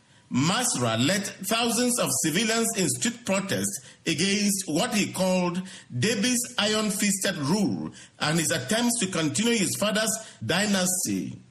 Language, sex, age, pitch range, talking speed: English, male, 50-69, 170-225 Hz, 120 wpm